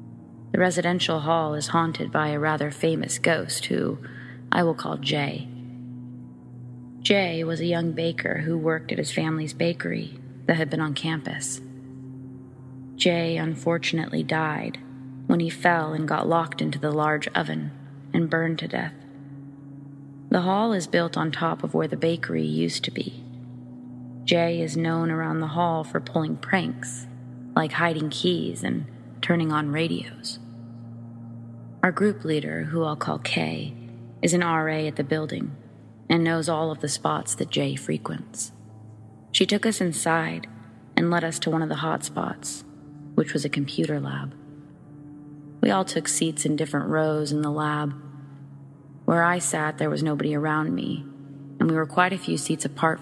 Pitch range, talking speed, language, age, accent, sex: 125-160 Hz, 160 wpm, English, 30-49, American, female